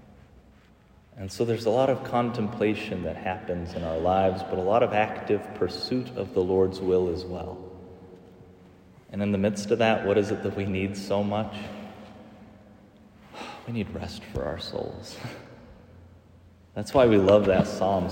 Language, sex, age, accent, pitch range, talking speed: English, male, 30-49, American, 95-115 Hz, 165 wpm